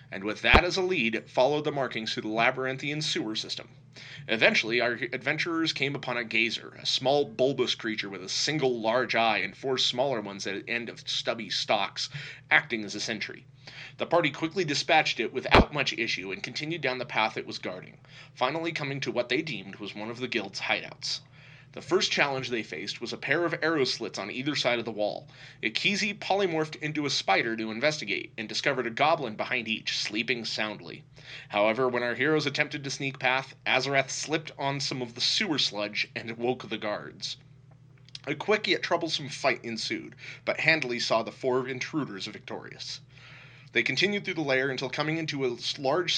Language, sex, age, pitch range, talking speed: English, male, 30-49, 115-150 Hz, 190 wpm